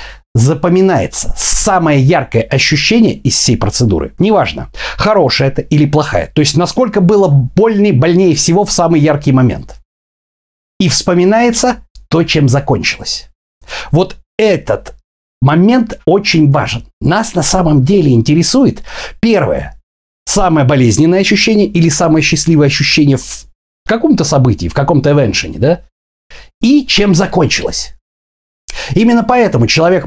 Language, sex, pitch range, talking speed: Russian, male, 120-180 Hz, 120 wpm